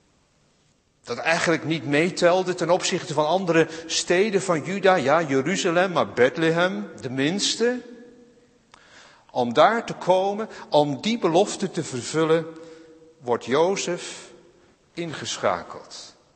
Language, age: Dutch, 60-79